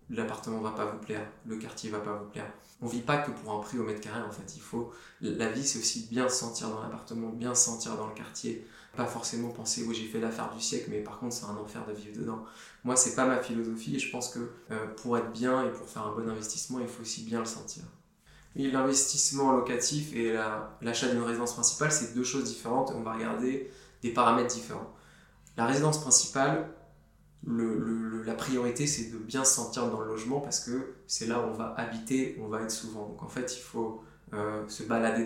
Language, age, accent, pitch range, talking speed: French, 20-39, French, 110-125 Hz, 240 wpm